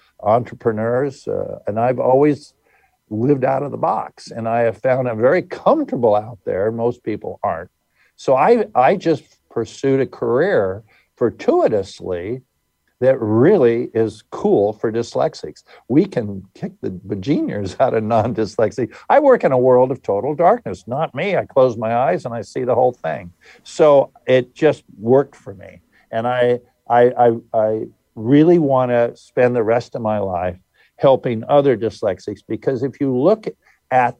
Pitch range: 105-130 Hz